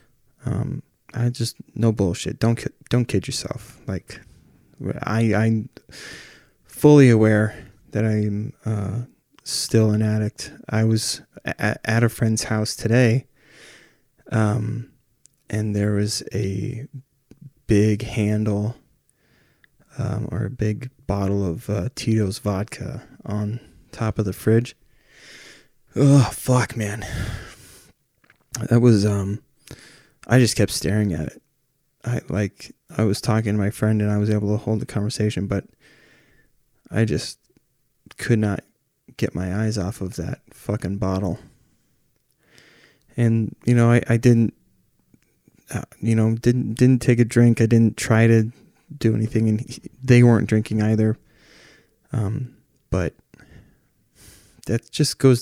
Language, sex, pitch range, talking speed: English, male, 105-125 Hz, 130 wpm